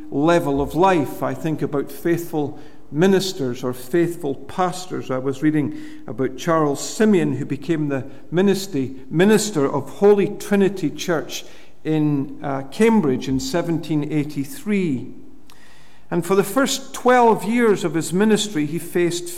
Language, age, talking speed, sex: English, 50-69, 125 wpm, male